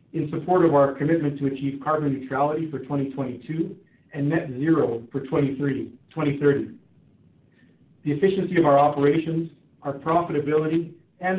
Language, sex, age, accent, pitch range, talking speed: English, male, 50-69, American, 135-165 Hz, 125 wpm